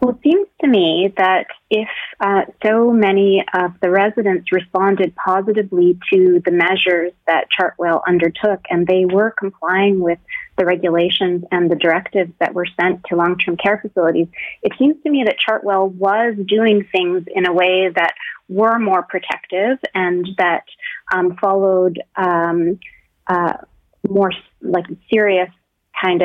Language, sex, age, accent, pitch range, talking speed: English, female, 30-49, American, 185-225 Hz, 145 wpm